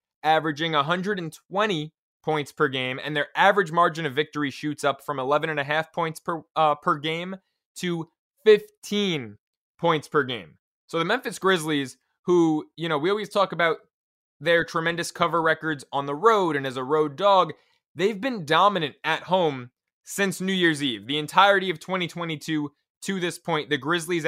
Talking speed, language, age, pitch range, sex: 165 wpm, English, 20-39, 150-185 Hz, male